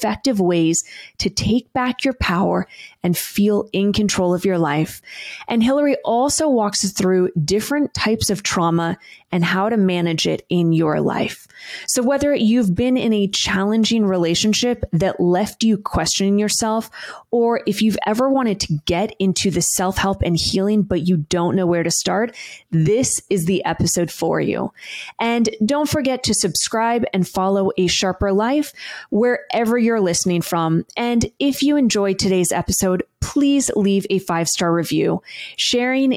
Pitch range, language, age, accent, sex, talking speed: 175-225 Hz, English, 20-39, American, female, 165 wpm